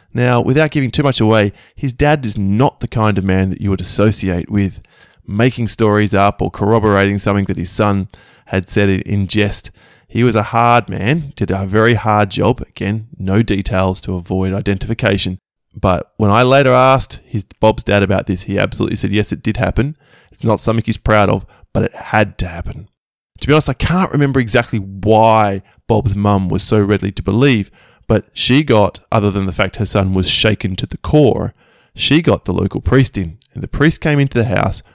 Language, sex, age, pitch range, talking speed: English, male, 20-39, 100-120 Hz, 205 wpm